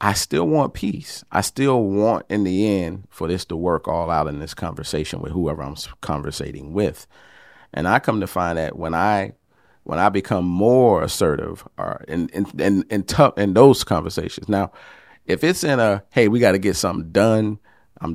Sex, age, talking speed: male, 40-59, 195 wpm